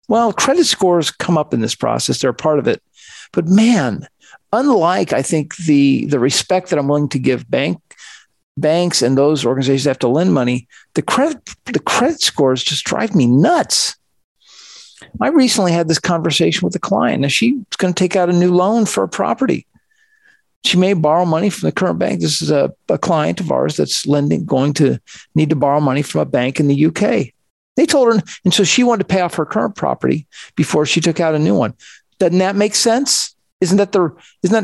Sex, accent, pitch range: male, American, 150-195 Hz